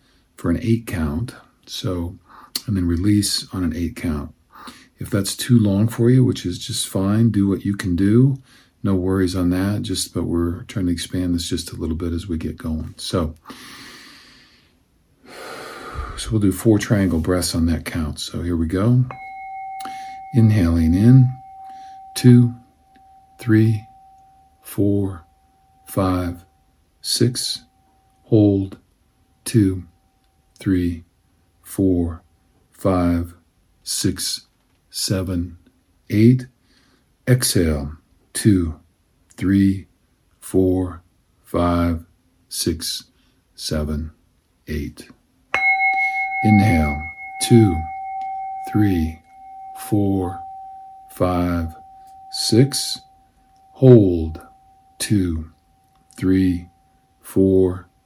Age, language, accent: 50-69, English, American